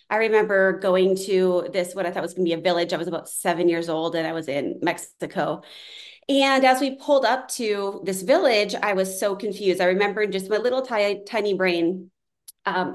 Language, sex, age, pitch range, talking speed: English, female, 30-49, 185-230 Hz, 210 wpm